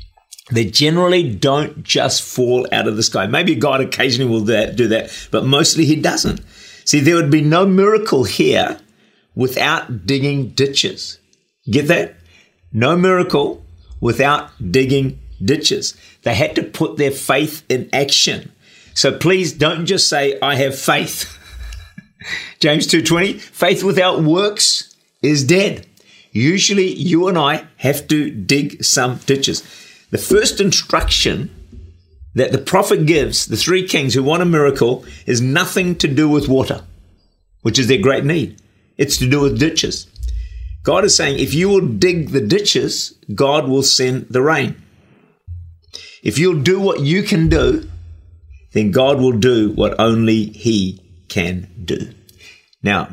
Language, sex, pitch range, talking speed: English, male, 105-160 Hz, 145 wpm